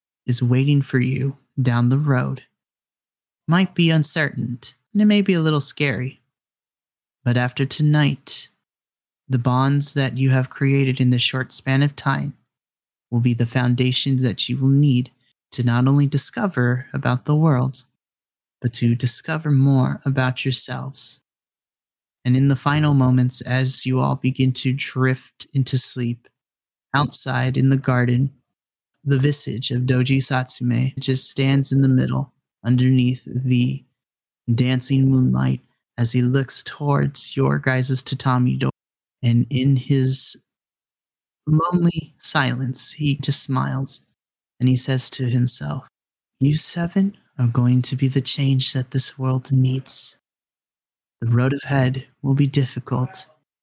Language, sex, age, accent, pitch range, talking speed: English, male, 30-49, American, 125-140 Hz, 140 wpm